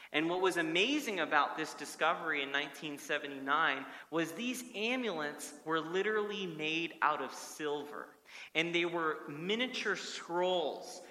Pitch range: 140-200 Hz